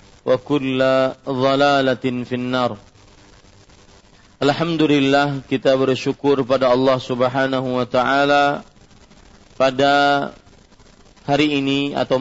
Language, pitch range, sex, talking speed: Malay, 125-140 Hz, male, 80 wpm